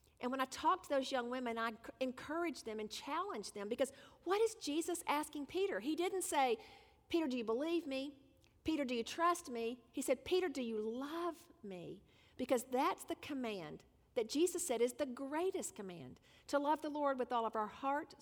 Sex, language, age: female, English, 50-69